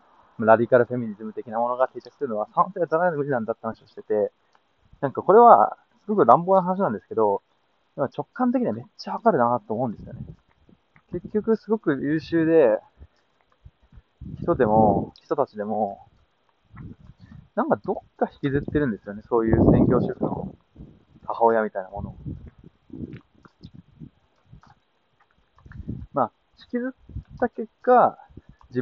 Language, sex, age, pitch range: Japanese, male, 20-39, 115-190 Hz